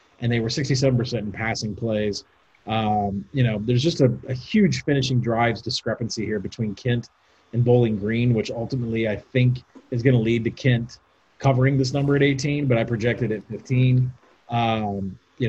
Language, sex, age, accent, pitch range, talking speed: English, male, 30-49, American, 105-130 Hz, 180 wpm